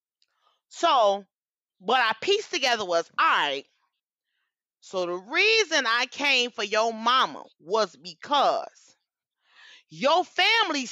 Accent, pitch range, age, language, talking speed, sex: American, 180-290 Hz, 30-49, English, 110 wpm, female